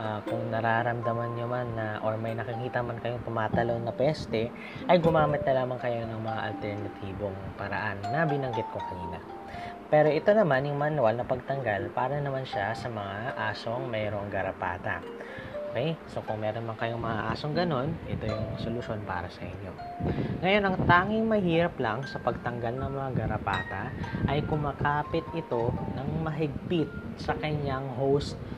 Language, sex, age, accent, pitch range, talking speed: Filipino, female, 20-39, native, 110-140 Hz, 160 wpm